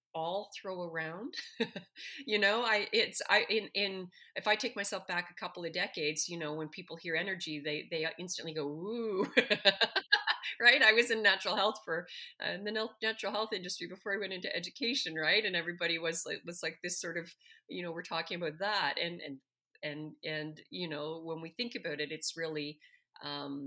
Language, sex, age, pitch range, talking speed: English, female, 30-49, 160-220 Hz, 200 wpm